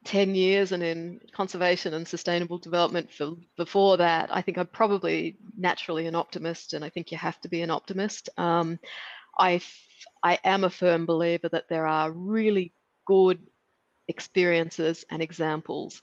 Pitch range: 165-195 Hz